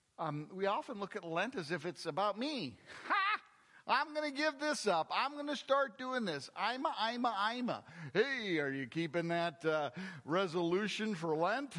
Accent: American